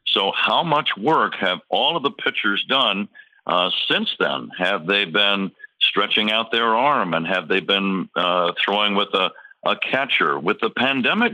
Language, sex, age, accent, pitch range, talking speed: English, male, 60-79, American, 100-130 Hz, 175 wpm